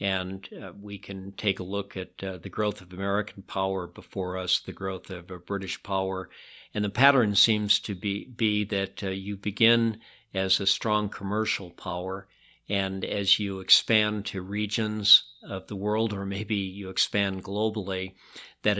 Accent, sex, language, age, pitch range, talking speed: American, male, English, 50-69, 95-110 Hz, 170 wpm